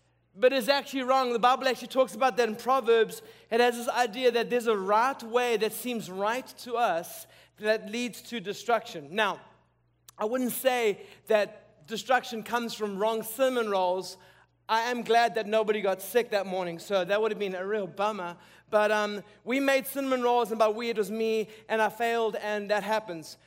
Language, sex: English, male